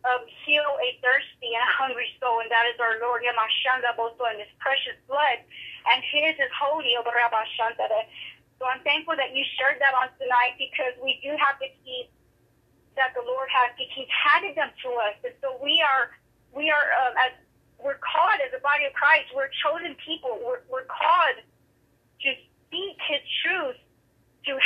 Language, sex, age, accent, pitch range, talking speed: English, female, 30-49, American, 255-320 Hz, 185 wpm